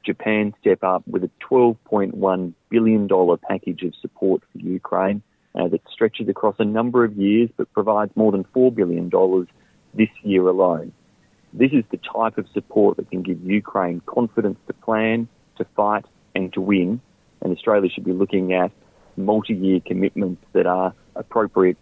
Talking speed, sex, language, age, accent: 155 wpm, male, Italian, 30-49, Australian